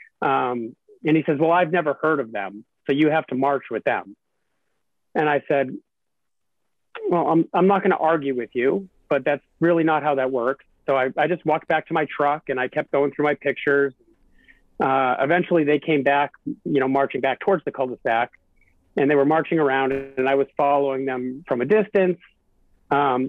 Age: 40-59